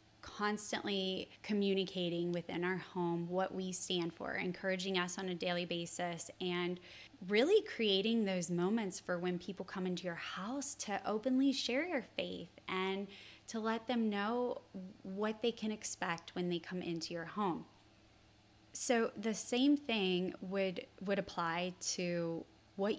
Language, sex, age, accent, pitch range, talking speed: English, female, 20-39, American, 170-205 Hz, 145 wpm